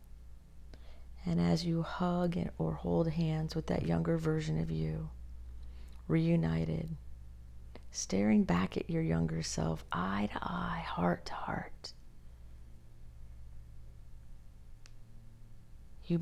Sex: female